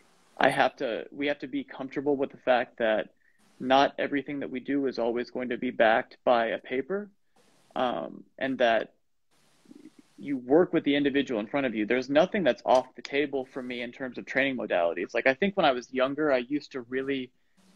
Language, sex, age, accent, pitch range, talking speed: English, male, 30-49, American, 125-150 Hz, 210 wpm